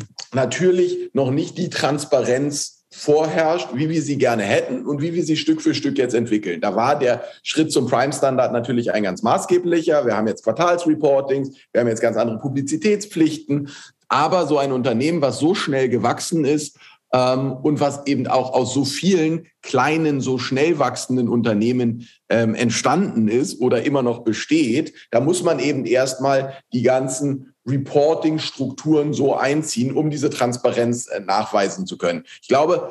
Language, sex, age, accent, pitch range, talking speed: German, male, 40-59, German, 125-155 Hz, 160 wpm